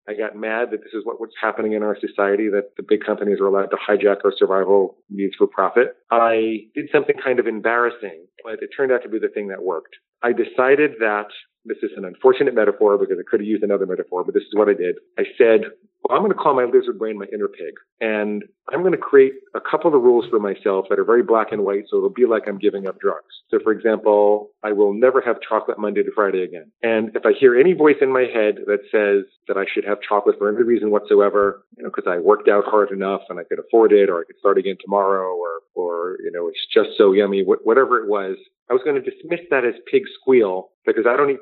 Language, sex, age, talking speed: English, male, 40-59, 250 wpm